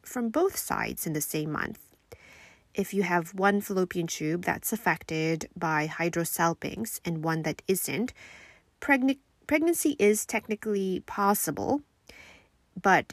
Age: 30-49